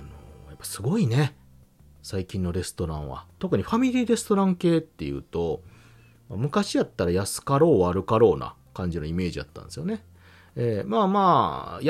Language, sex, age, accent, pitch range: Japanese, male, 40-59, native, 85-135 Hz